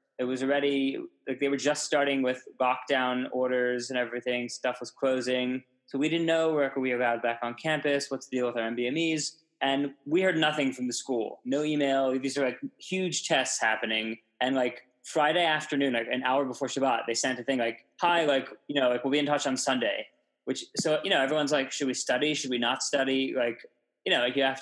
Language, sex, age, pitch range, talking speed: English, male, 20-39, 120-145 Hz, 225 wpm